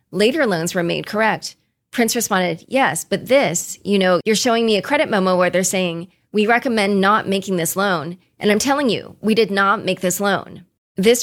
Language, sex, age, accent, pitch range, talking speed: English, female, 30-49, American, 175-220 Hz, 205 wpm